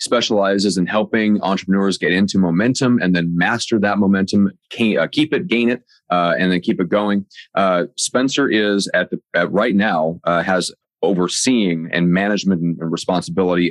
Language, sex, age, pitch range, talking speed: English, male, 30-49, 85-105 Hz, 160 wpm